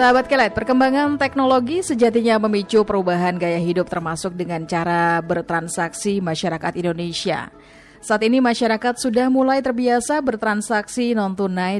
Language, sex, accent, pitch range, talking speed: Indonesian, female, native, 175-230 Hz, 115 wpm